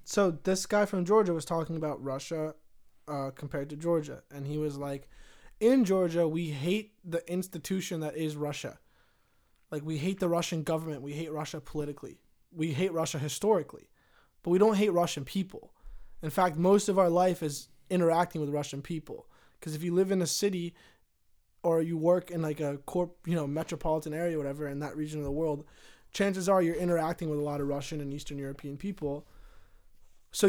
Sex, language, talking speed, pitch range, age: male, English, 190 wpm, 150-190 Hz, 20-39